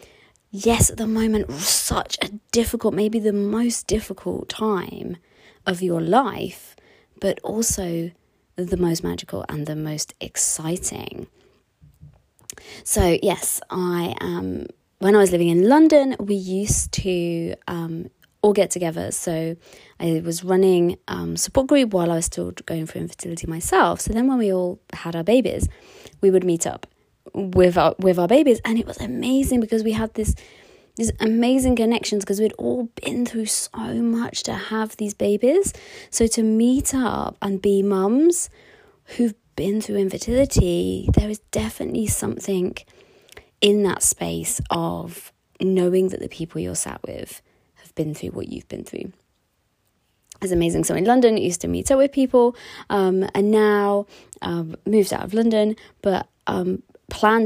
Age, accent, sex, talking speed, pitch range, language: 20-39, British, female, 155 wpm, 175-225 Hz, English